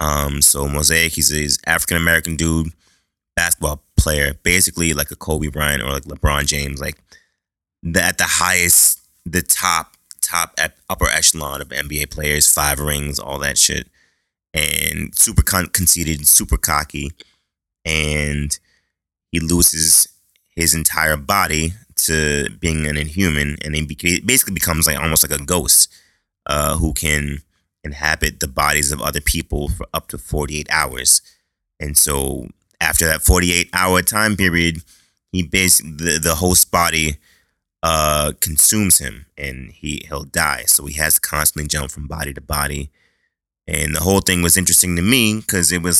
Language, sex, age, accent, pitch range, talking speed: English, male, 20-39, American, 75-90 Hz, 155 wpm